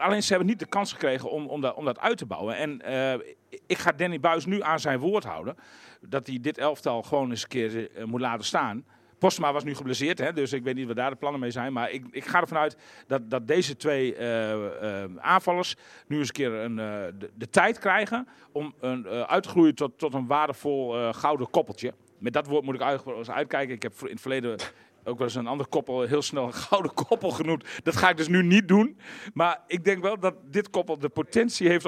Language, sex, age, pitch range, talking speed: English, male, 40-59, 125-175 Hz, 245 wpm